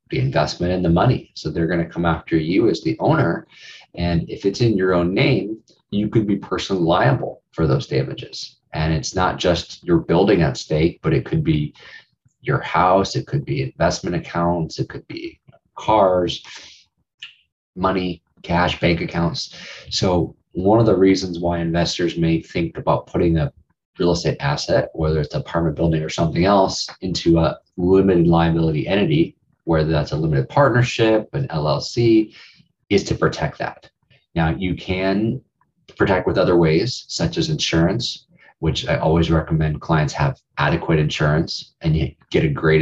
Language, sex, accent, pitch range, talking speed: English, male, American, 80-95 Hz, 165 wpm